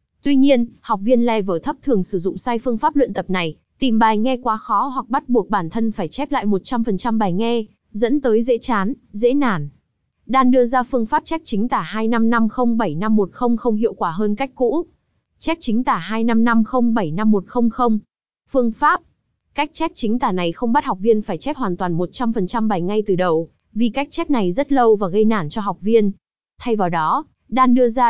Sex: female